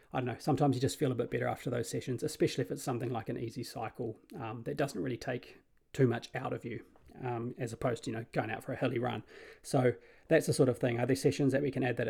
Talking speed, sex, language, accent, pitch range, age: 285 wpm, male, English, Australian, 120-150 Hz, 30-49